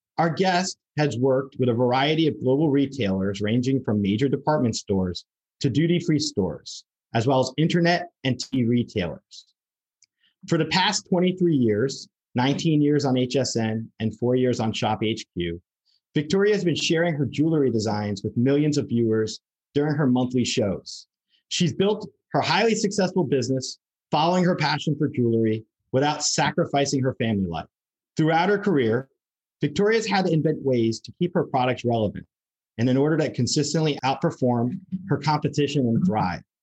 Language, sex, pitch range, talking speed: English, male, 115-155 Hz, 155 wpm